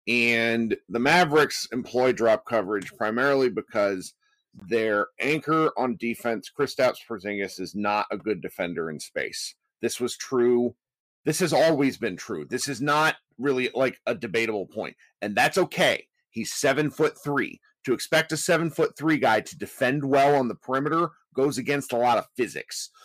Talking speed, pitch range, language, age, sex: 165 wpm, 125-180 Hz, English, 40-59, male